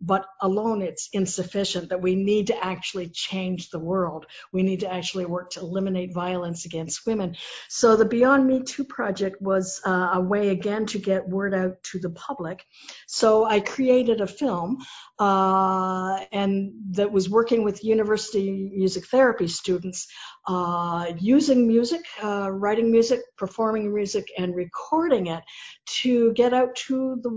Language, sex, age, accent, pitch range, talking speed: English, female, 50-69, American, 180-220 Hz, 155 wpm